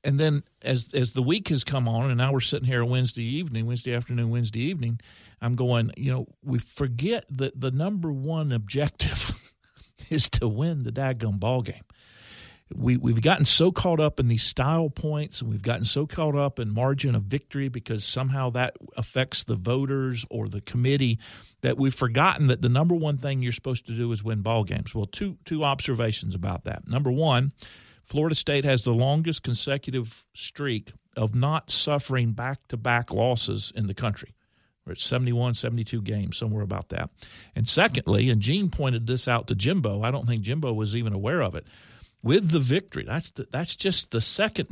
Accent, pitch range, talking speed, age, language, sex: American, 115-145 Hz, 185 wpm, 50-69, English, male